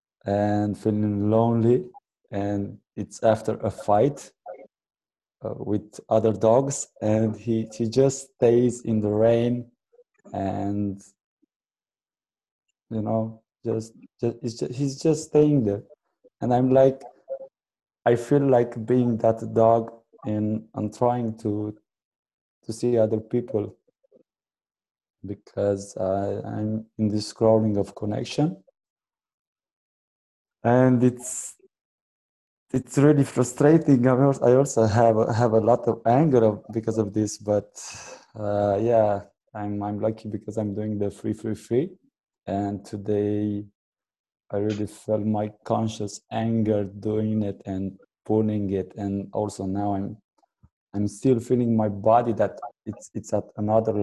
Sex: male